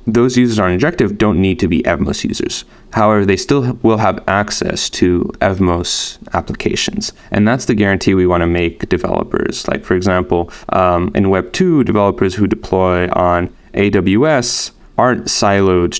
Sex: male